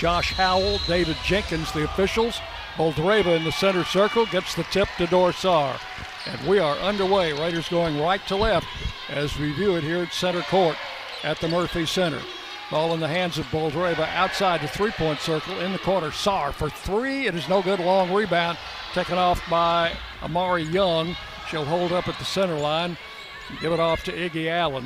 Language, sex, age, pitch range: English, male, 60-79, 155-180 Hz